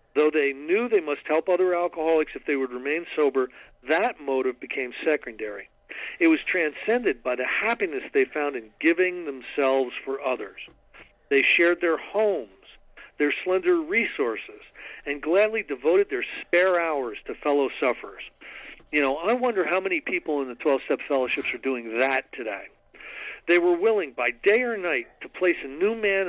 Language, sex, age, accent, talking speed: English, male, 50-69, American, 165 wpm